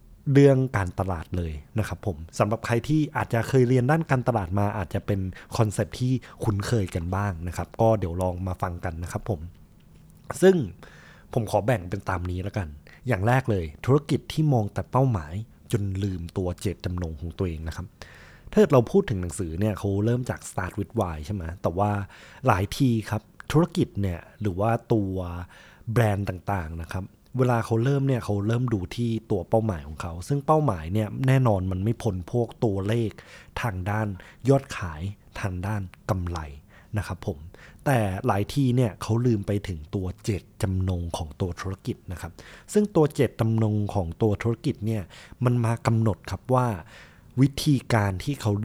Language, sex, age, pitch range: Thai, male, 20-39, 90-120 Hz